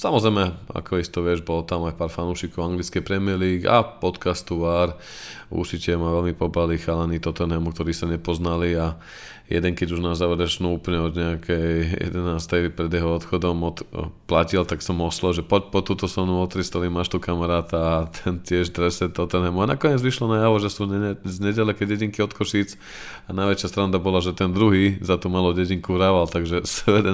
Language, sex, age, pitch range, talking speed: Slovak, male, 20-39, 85-95 Hz, 180 wpm